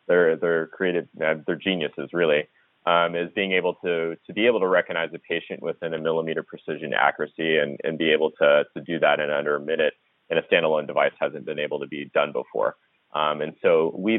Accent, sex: American, male